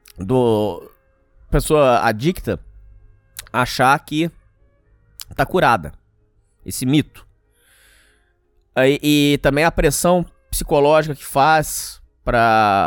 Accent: Brazilian